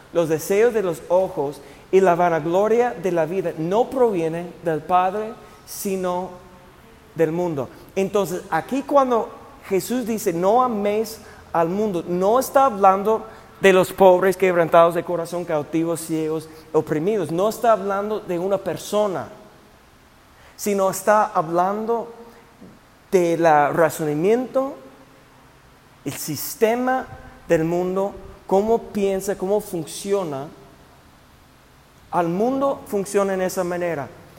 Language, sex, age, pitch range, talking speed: Spanish, male, 40-59, 160-215 Hz, 110 wpm